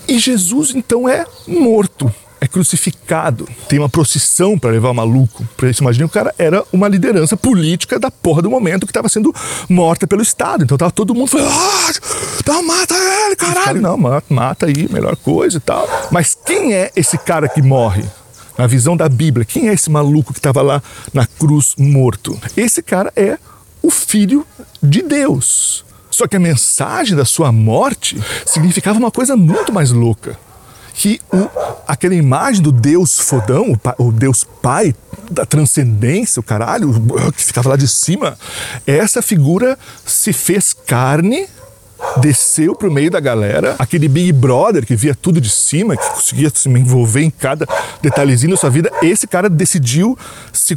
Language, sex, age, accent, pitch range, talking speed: Portuguese, male, 40-59, Brazilian, 125-200 Hz, 170 wpm